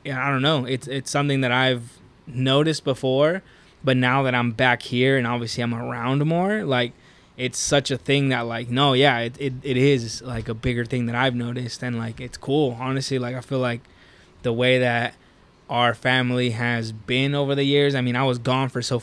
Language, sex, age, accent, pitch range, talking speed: English, male, 20-39, American, 120-135 Hz, 215 wpm